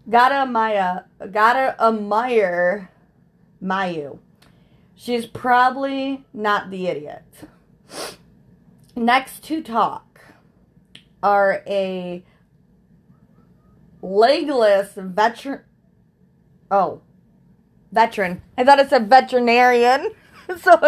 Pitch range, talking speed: 190-250 Hz, 70 wpm